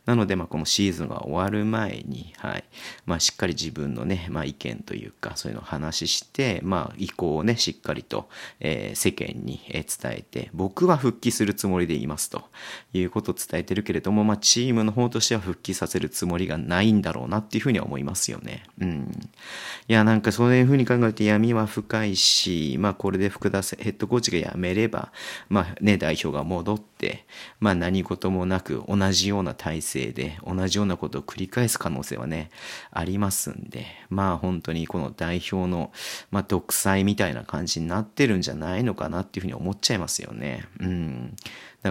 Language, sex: Japanese, male